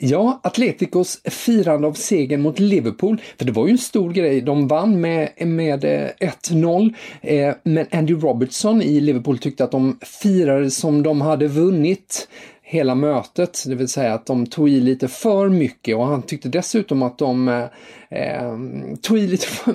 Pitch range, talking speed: 125-160 Hz, 160 wpm